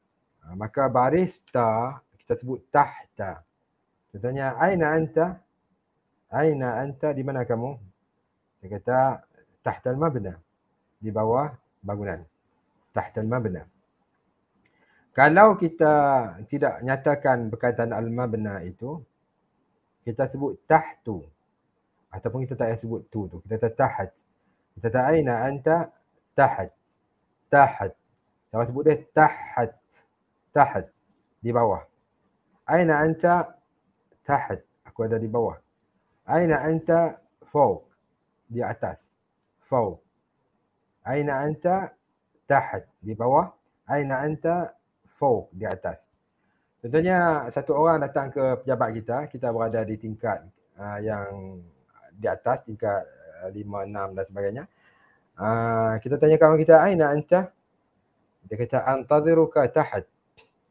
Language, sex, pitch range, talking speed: English, male, 110-155 Hz, 110 wpm